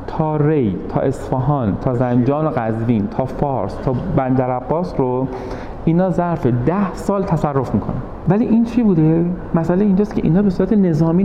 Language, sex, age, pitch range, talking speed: Persian, male, 40-59, 110-160 Hz, 160 wpm